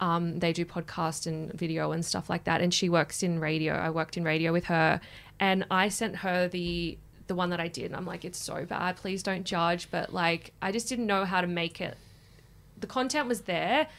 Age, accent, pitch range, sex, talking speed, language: 20-39, Australian, 165-190 Hz, female, 230 wpm, English